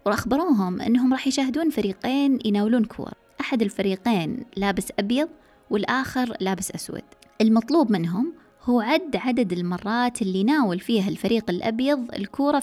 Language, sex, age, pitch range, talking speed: Arabic, female, 20-39, 195-265 Hz, 125 wpm